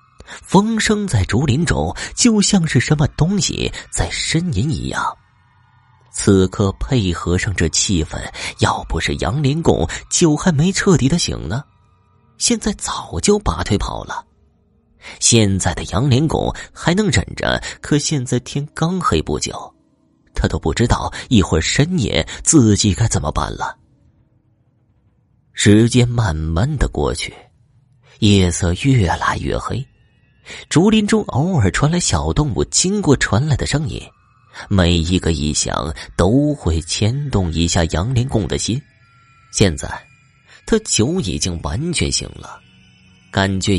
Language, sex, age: Chinese, male, 30-49